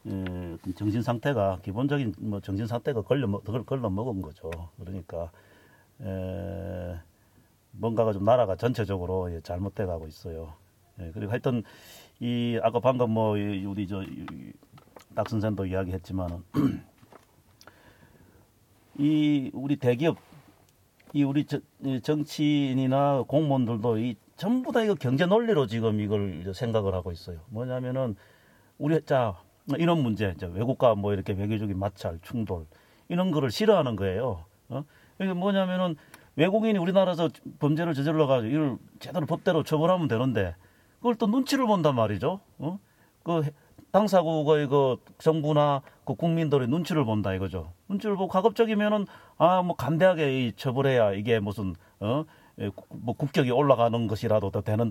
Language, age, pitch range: Korean, 40-59, 100-155 Hz